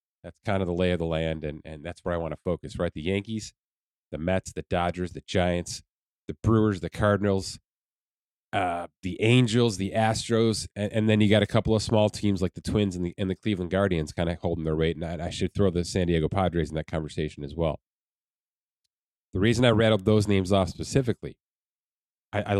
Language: English